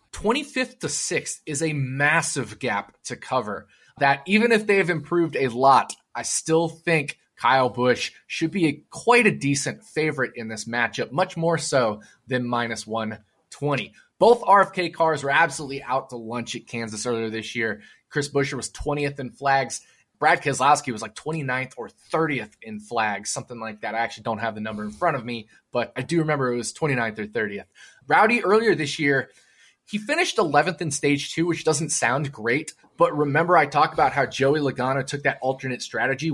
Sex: male